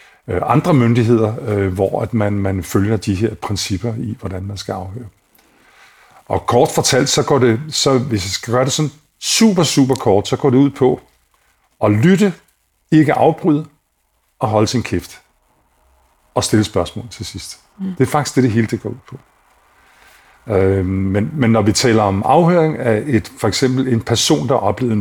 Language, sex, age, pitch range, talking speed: Danish, male, 50-69, 105-130 Hz, 170 wpm